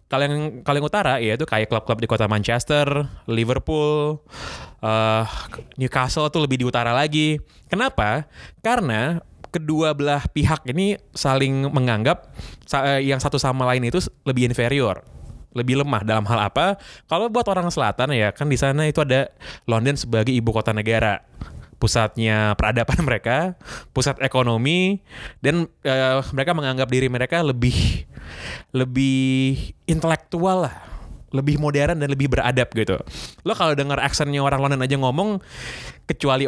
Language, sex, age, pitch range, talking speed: Indonesian, male, 20-39, 115-145 Hz, 135 wpm